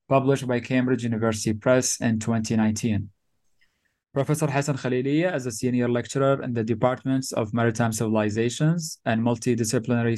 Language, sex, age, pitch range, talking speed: English, male, 20-39, 115-135 Hz, 130 wpm